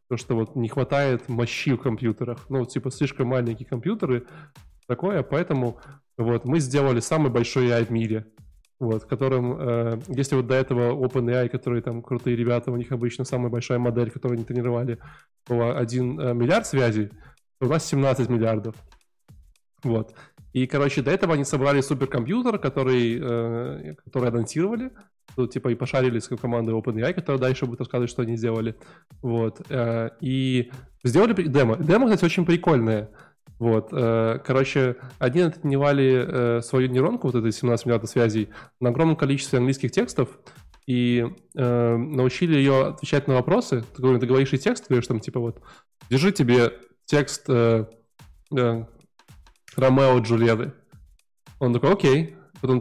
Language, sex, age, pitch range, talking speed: Russian, male, 20-39, 120-140 Hz, 145 wpm